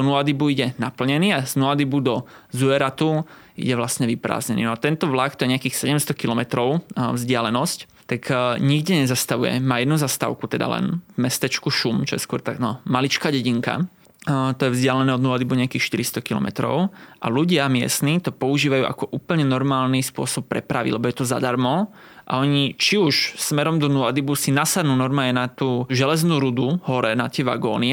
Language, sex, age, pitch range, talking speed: Slovak, male, 20-39, 125-140 Hz, 170 wpm